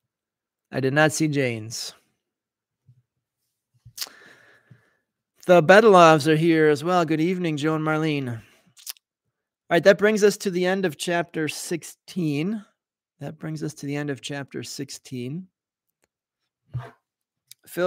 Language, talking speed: English, 120 wpm